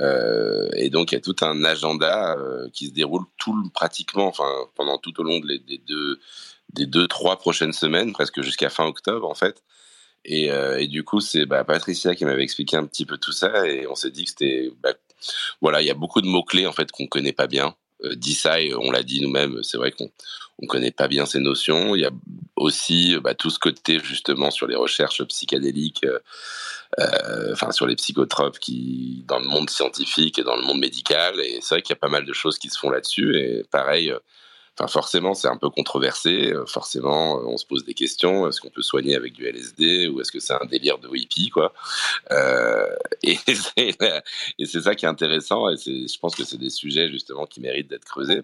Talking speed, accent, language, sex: 225 wpm, French, English, male